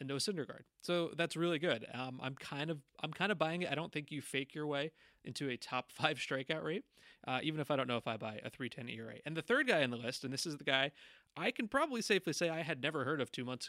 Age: 30-49